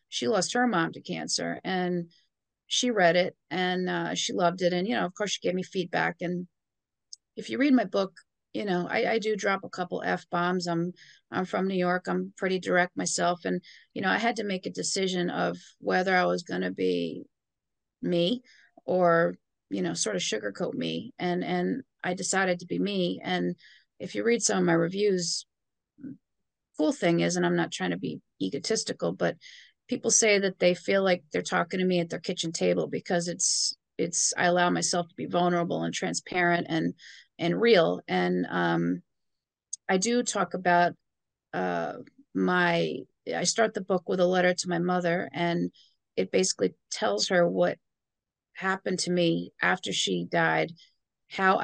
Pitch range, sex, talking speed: 170-190 Hz, female, 185 wpm